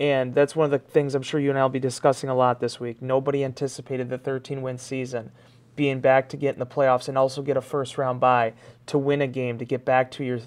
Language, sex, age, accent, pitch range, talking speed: English, male, 30-49, American, 130-155 Hz, 260 wpm